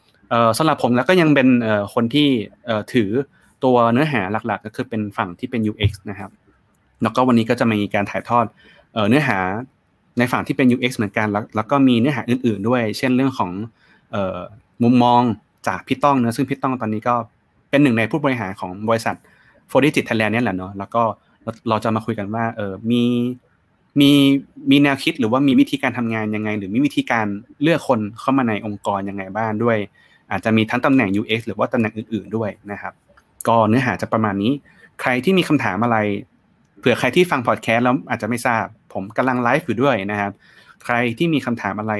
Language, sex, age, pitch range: Thai, male, 20-39, 105-130 Hz